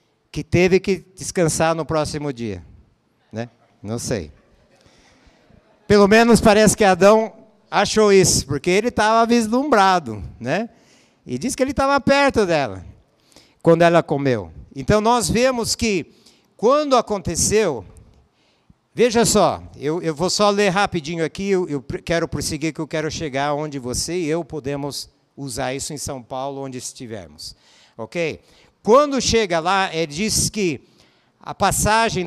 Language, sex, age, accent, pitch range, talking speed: Portuguese, male, 60-79, Brazilian, 140-220 Hz, 140 wpm